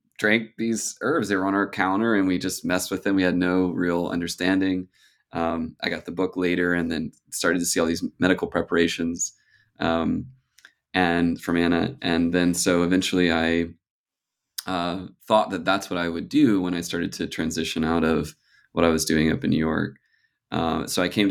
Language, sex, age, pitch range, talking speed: English, male, 20-39, 85-95 Hz, 195 wpm